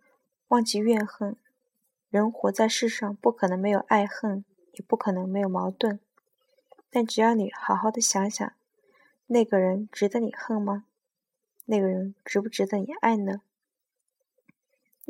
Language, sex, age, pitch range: Chinese, female, 20-39, 205-260 Hz